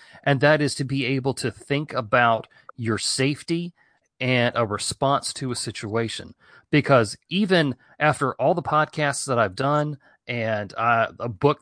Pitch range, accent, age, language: 115-145 Hz, American, 40-59, English